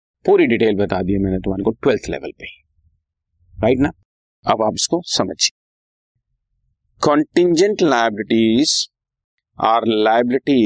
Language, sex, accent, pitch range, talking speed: Hindi, male, native, 100-140 Hz, 85 wpm